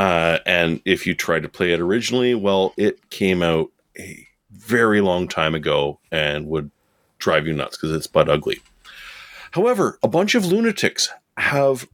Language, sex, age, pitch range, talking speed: English, male, 30-49, 85-125 Hz, 165 wpm